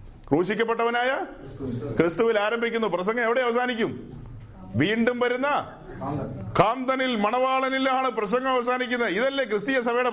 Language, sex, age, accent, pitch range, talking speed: Malayalam, male, 40-59, native, 180-245 Hz, 90 wpm